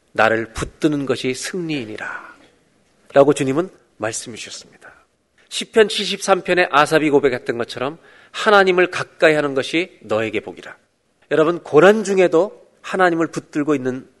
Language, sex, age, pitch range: Korean, male, 40-59, 155-205 Hz